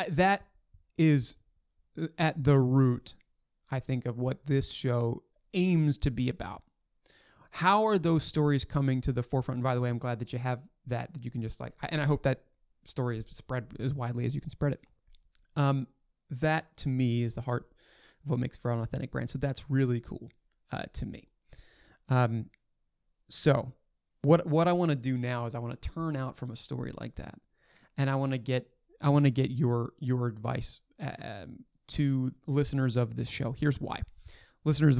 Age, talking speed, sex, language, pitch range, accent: 30-49, 195 wpm, male, English, 120-150 Hz, American